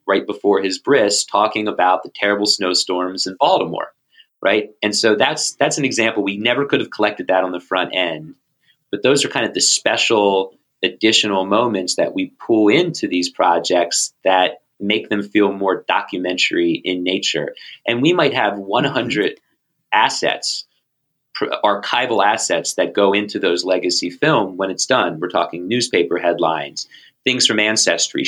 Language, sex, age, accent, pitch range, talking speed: English, male, 30-49, American, 90-105 Hz, 160 wpm